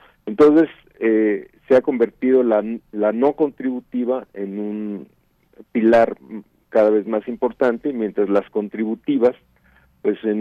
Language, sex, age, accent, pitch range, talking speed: Italian, male, 50-69, Mexican, 110-140 Hz, 120 wpm